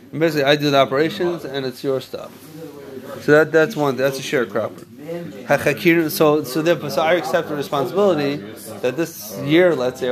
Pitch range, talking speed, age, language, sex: 135-165 Hz, 180 wpm, 30-49, English, male